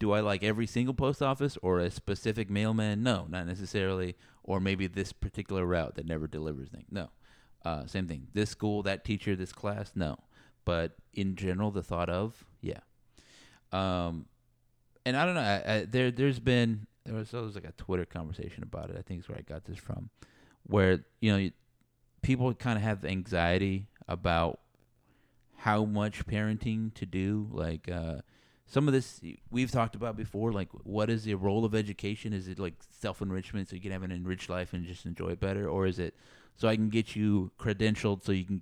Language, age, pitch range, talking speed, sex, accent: English, 30-49, 90-110 Hz, 195 wpm, male, American